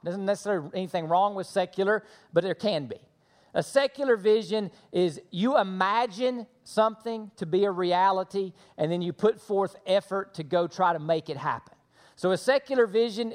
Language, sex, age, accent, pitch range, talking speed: English, male, 40-59, American, 175-220 Hz, 175 wpm